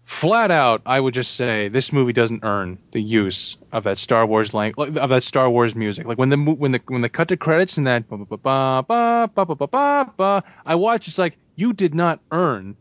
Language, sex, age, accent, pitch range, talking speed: English, male, 20-39, American, 110-140 Hz, 195 wpm